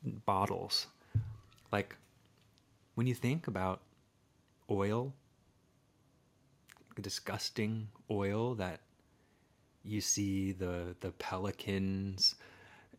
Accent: American